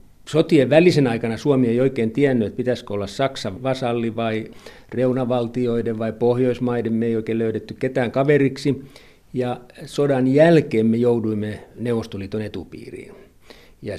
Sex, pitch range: male, 110-135 Hz